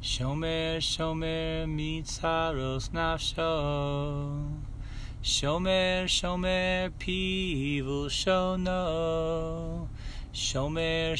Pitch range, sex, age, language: 140-185 Hz, male, 30-49, English